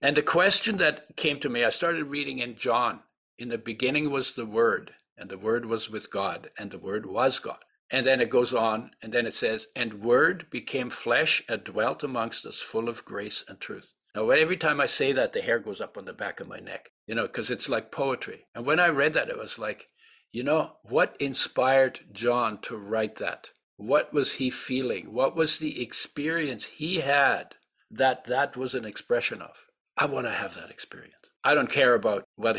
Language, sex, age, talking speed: English, male, 60-79, 215 wpm